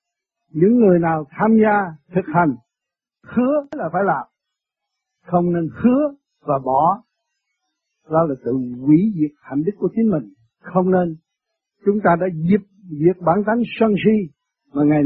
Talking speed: 155 wpm